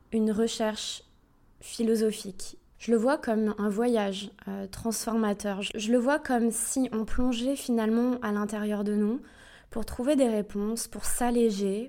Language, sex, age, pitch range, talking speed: French, female, 20-39, 195-225 Hz, 150 wpm